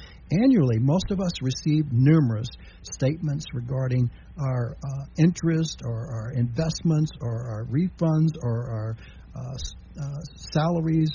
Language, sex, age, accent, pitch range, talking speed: English, male, 60-79, American, 125-170 Hz, 120 wpm